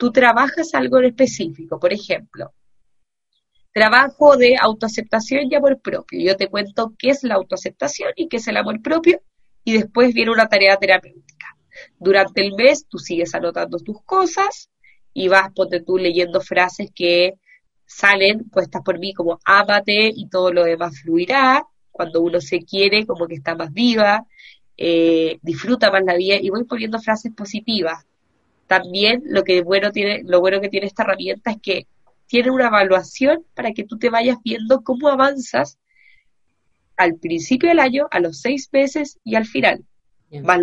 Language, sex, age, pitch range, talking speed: Spanish, female, 20-39, 180-245 Hz, 165 wpm